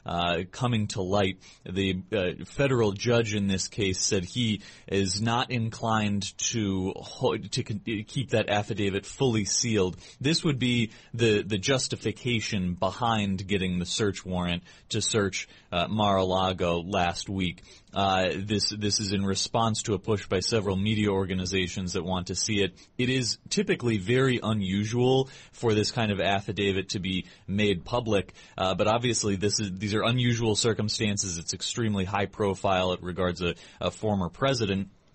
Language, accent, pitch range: English, American, 95-115 Hz